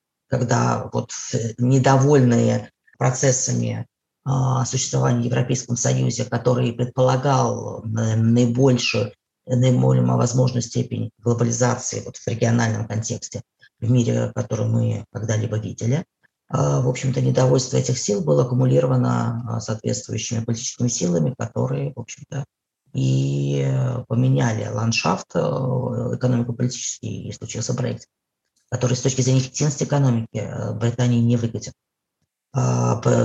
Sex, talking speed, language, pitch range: female, 95 wpm, Russian, 115-130 Hz